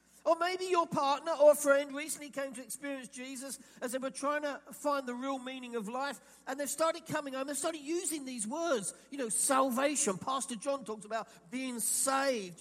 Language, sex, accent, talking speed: English, male, British, 200 wpm